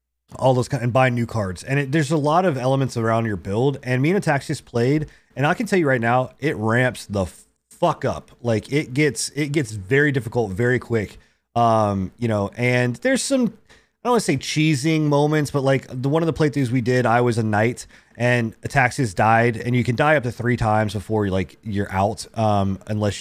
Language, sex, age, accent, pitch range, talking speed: English, male, 30-49, American, 105-140 Hz, 220 wpm